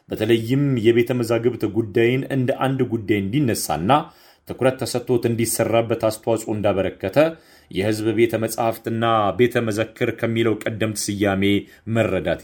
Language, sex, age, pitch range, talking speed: Amharic, male, 30-49, 110-125 Hz, 100 wpm